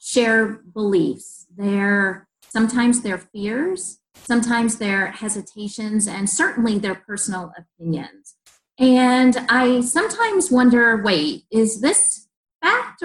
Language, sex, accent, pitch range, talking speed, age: English, female, American, 195-265 Hz, 100 wpm, 30-49